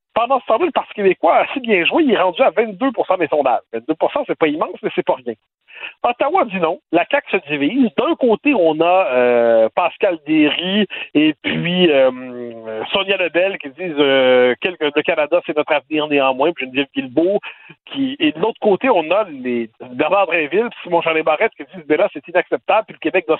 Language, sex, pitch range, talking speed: French, male, 155-250 Hz, 200 wpm